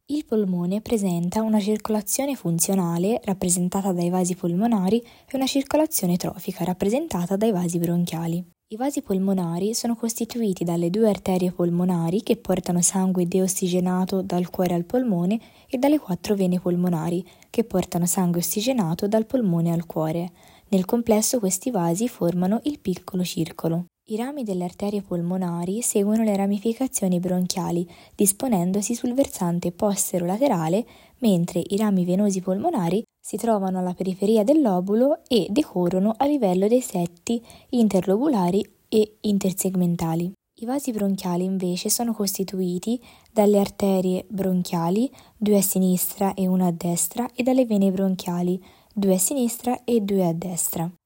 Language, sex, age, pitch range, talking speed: Italian, female, 10-29, 180-220 Hz, 135 wpm